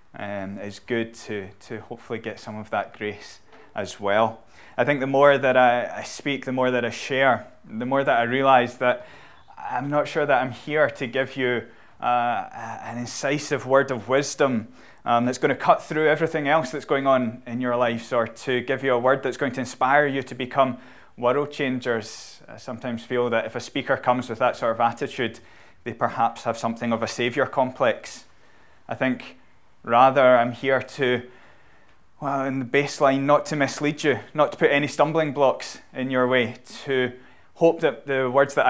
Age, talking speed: 20-39, 195 wpm